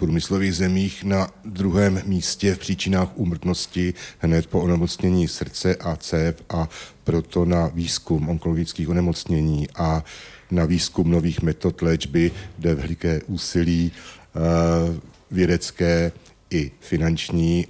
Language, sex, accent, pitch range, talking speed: Czech, male, native, 80-85 Hz, 110 wpm